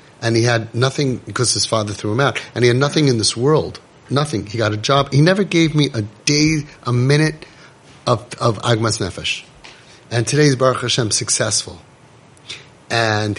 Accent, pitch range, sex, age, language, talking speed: American, 110-140 Hz, male, 30-49, English, 180 wpm